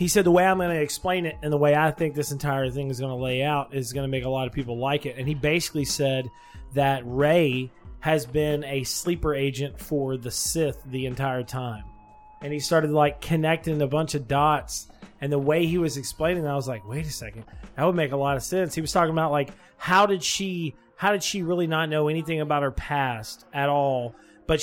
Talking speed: 240 wpm